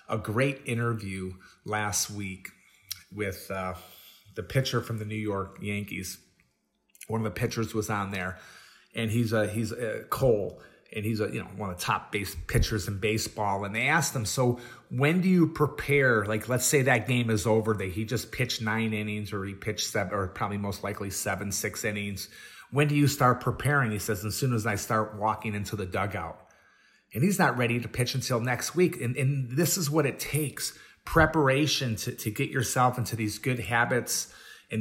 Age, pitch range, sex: 30-49, 105-135 Hz, male